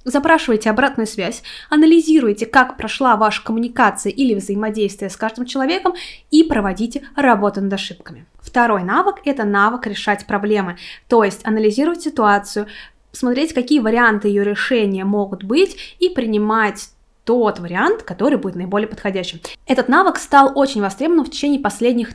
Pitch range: 210-270 Hz